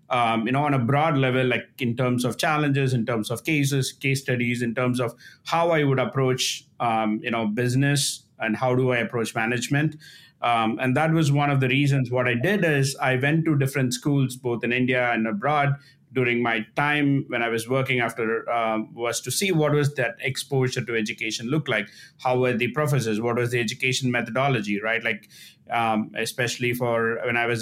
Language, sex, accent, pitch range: English, male, Indian, 120-140 Hz